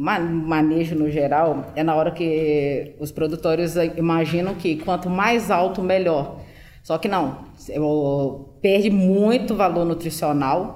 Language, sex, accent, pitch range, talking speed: Portuguese, female, Brazilian, 165-210 Hz, 125 wpm